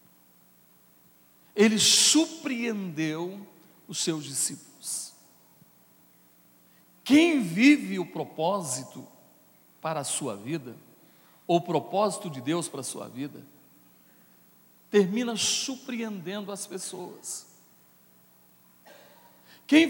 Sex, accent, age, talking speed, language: male, Brazilian, 60-79, 80 wpm, Portuguese